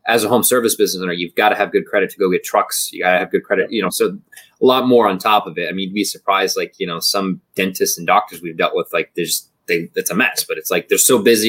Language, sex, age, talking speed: English, male, 20-39, 310 wpm